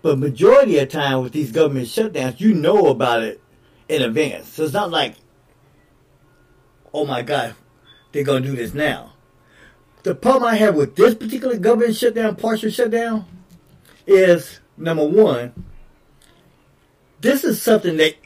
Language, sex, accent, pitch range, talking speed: English, male, American, 140-200 Hz, 150 wpm